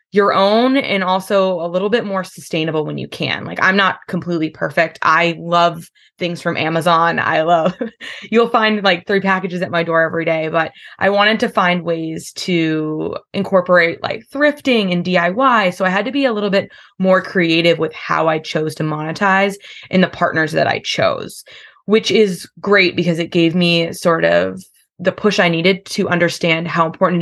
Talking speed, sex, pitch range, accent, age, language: 185 wpm, female, 165-200 Hz, American, 20-39, English